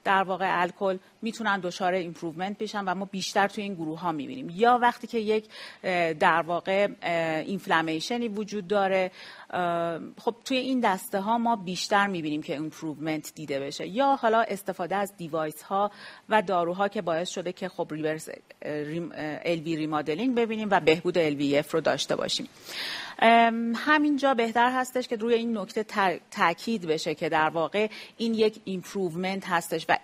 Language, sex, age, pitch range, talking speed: Persian, female, 40-59, 170-215 Hz, 150 wpm